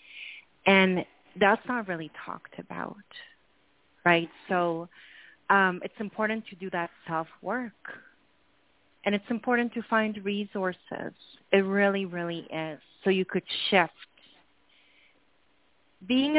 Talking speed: 110 wpm